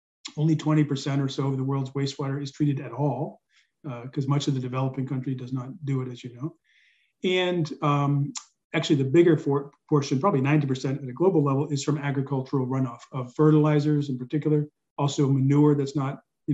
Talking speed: 190 wpm